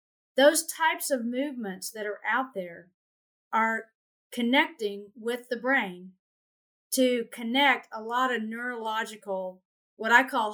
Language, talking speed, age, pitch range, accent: English, 125 wpm, 40-59, 200-250 Hz, American